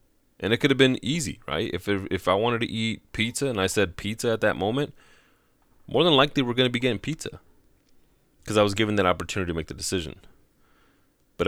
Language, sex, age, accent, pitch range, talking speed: English, male, 30-49, American, 85-110 Hz, 215 wpm